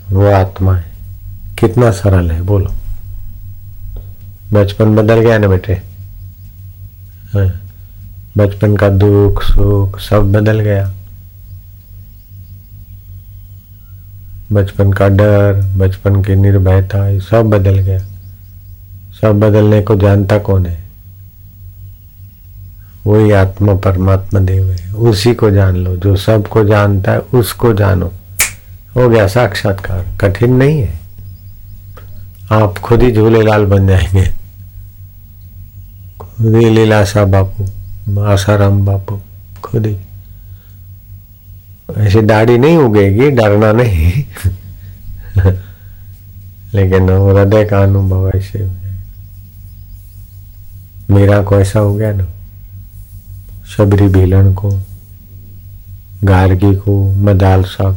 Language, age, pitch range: Hindi, 50-69, 95-100 Hz